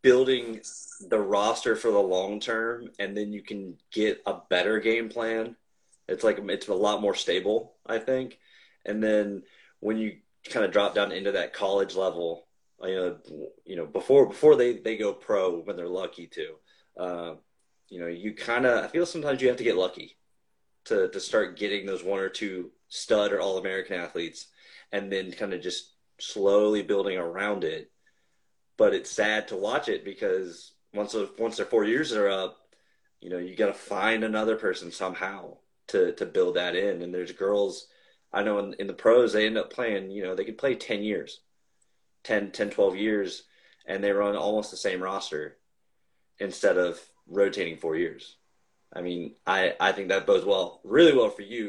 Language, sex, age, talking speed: English, male, 30-49, 190 wpm